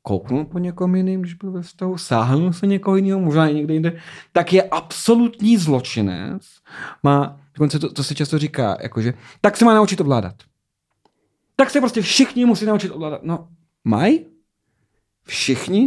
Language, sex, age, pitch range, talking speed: Czech, male, 30-49, 130-175 Hz, 155 wpm